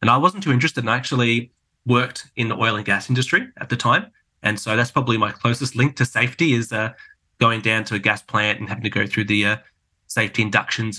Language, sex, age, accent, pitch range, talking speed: English, male, 20-39, Australian, 105-120 Hz, 240 wpm